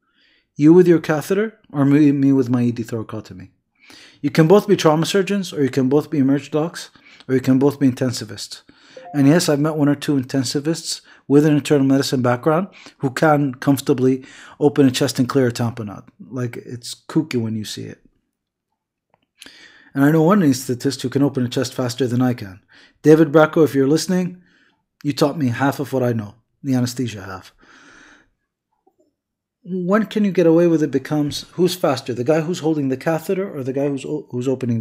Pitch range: 130-160 Hz